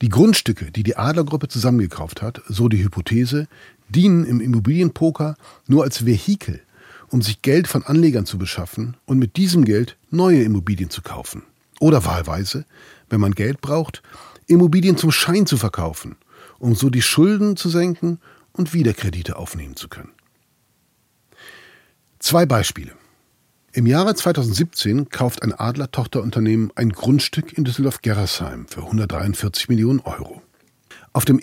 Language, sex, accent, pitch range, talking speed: German, male, German, 105-150 Hz, 135 wpm